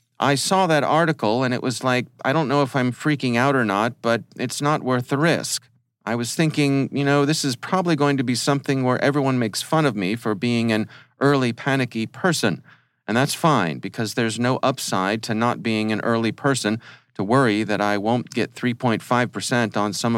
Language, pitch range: English, 105-135 Hz